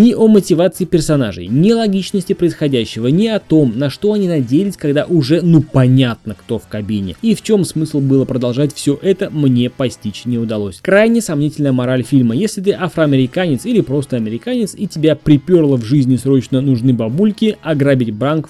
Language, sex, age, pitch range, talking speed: Russian, male, 20-39, 125-185 Hz, 175 wpm